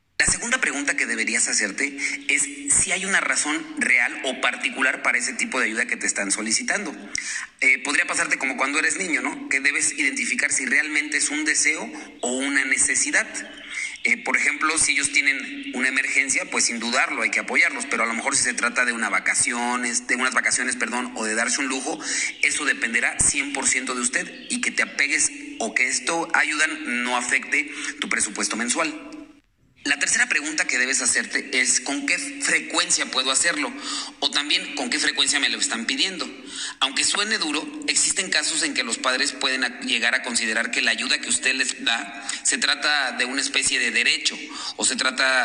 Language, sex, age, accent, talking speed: Spanish, male, 40-59, Mexican, 190 wpm